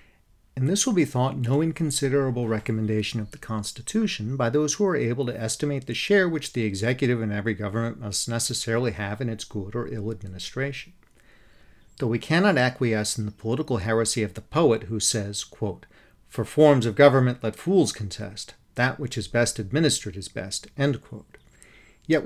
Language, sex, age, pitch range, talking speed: English, male, 40-59, 110-145 Hz, 180 wpm